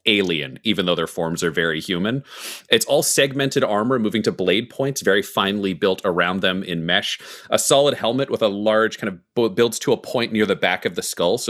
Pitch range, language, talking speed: 95-120 Hz, English, 225 wpm